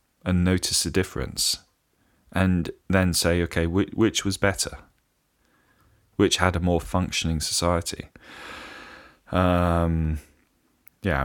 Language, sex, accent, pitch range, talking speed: English, male, British, 75-95 Hz, 105 wpm